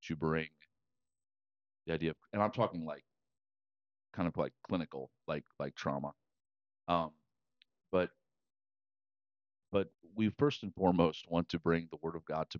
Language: English